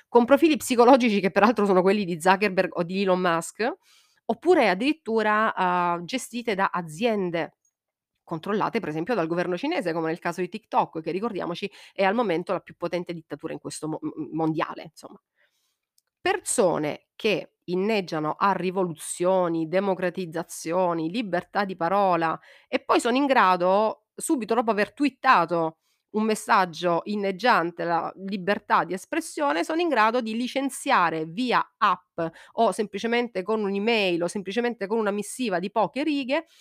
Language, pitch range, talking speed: Italian, 175-240 Hz, 145 wpm